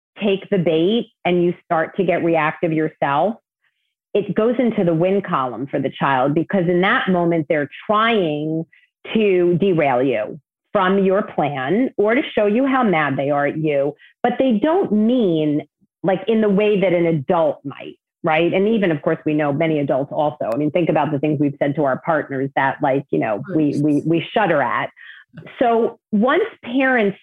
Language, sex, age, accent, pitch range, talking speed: English, female, 40-59, American, 150-200 Hz, 185 wpm